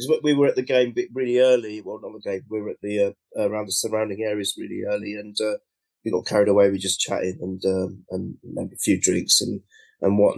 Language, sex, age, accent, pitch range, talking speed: English, male, 30-49, British, 105-145 Hz, 230 wpm